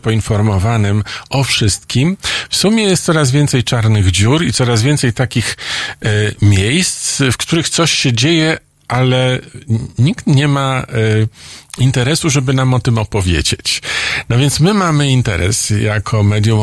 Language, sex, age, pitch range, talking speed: Polish, male, 50-69, 105-130 Hz, 135 wpm